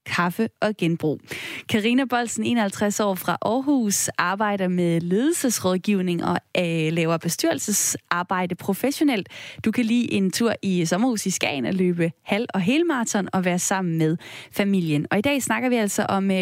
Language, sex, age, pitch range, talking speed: Danish, female, 20-39, 180-235 Hz, 150 wpm